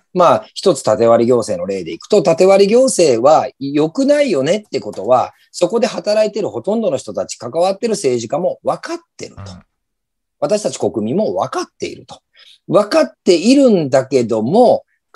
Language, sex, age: Japanese, male, 40-59